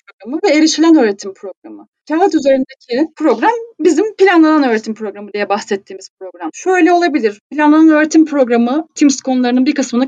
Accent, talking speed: native, 135 wpm